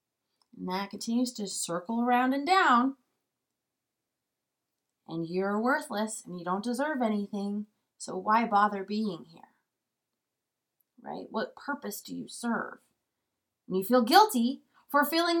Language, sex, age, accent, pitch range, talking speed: English, female, 20-39, American, 215-280 Hz, 130 wpm